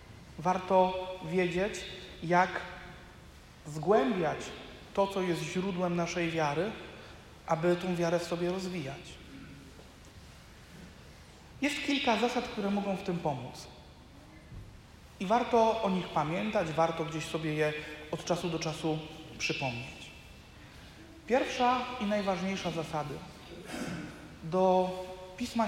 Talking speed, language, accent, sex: 100 wpm, Polish, native, male